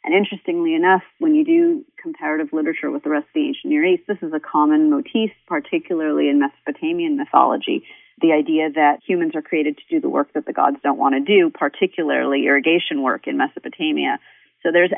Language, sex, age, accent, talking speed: English, female, 40-59, American, 195 wpm